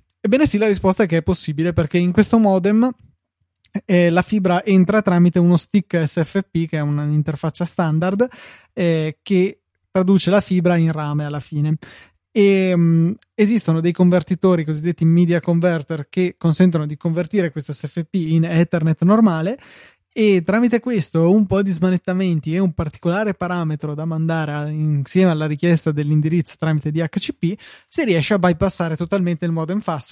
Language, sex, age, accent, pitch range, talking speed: Italian, male, 20-39, native, 160-195 Hz, 150 wpm